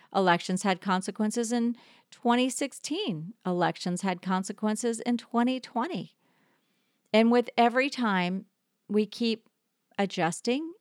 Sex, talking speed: female, 95 wpm